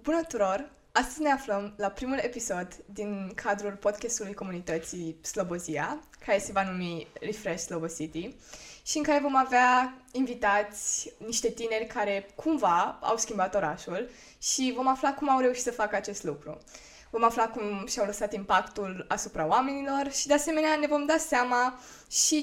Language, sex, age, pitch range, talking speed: Romanian, female, 20-39, 185-260 Hz, 160 wpm